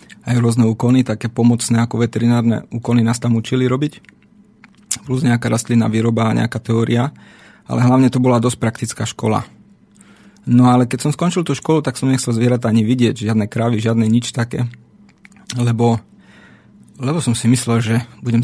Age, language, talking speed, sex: 30-49, Slovak, 165 wpm, male